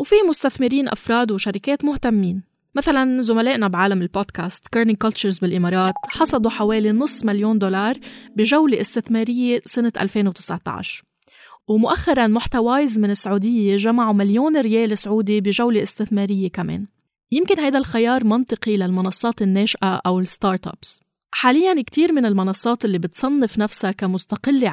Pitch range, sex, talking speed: 200-250 Hz, female, 120 wpm